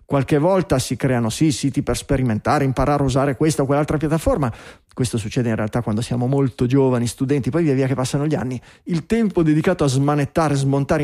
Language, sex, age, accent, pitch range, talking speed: Italian, male, 30-49, native, 140-185 Hz, 195 wpm